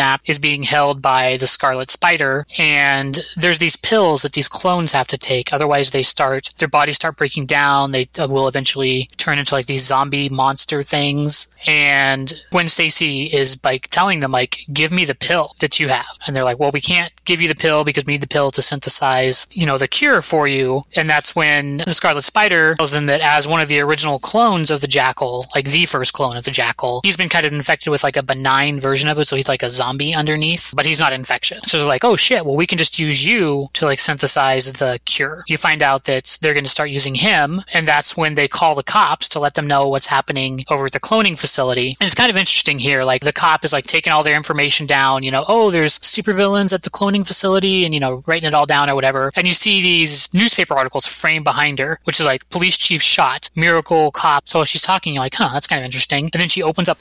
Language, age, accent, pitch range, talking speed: English, 20-39, American, 135-165 Hz, 245 wpm